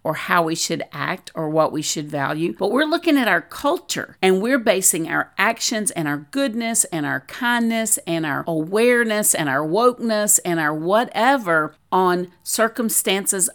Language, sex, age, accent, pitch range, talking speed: English, female, 50-69, American, 165-220 Hz, 170 wpm